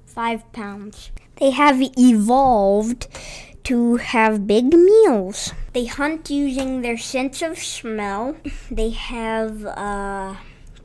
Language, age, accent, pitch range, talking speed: English, 20-39, American, 210-285 Hz, 110 wpm